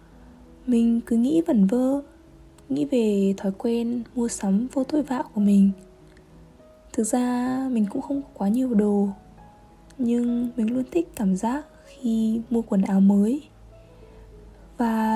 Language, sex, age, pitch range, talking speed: Vietnamese, female, 20-39, 200-255 Hz, 145 wpm